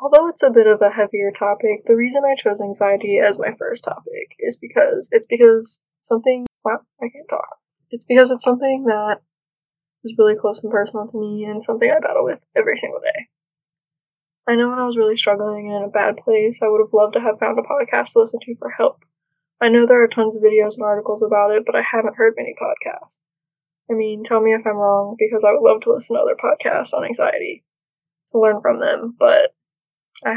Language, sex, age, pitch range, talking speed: English, female, 10-29, 205-255 Hz, 225 wpm